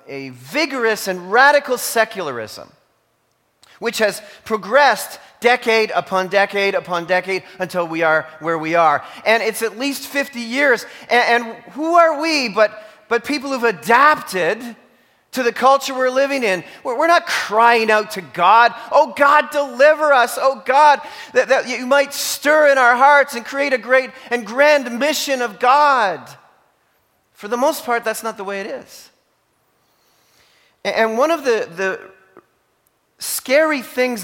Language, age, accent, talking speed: English, 40-59, American, 155 wpm